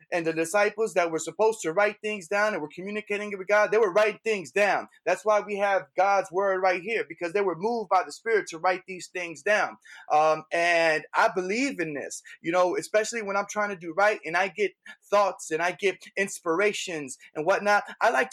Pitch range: 165-210 Hz